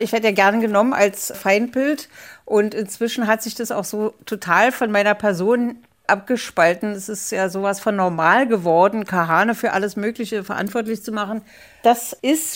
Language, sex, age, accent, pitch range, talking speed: German, female, 60-79, German, 185-235 Hz, 165 wpm